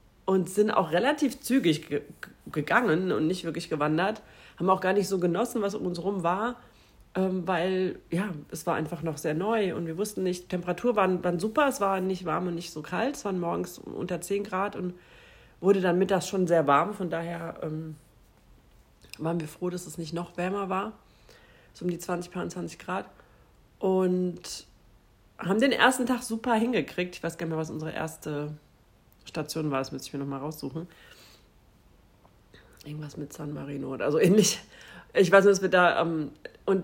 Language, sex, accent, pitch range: German, female, German, 165-200 Hz